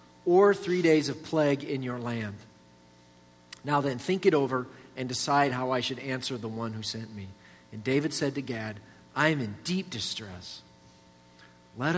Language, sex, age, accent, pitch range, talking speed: English, male, 50-69, American, 105-165 Hz, 175 wpm